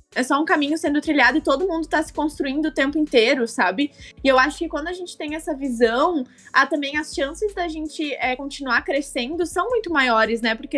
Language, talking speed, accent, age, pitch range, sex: Portuguese, 225 wpm, Brazilian, 20-39, 240-325 Hz, female